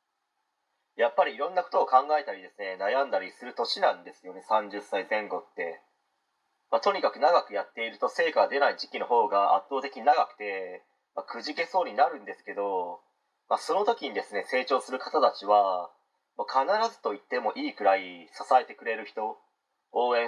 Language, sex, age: Japanese, male, 30-49